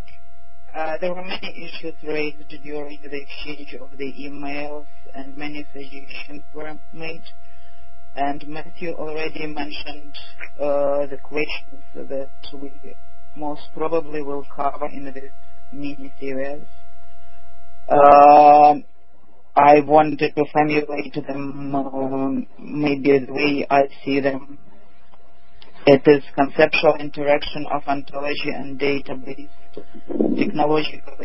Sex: female